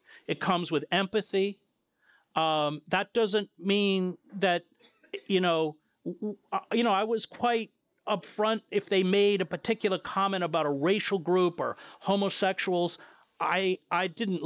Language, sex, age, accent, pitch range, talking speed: English, male, 50-69, American, 160-205 Hz, 135 wpm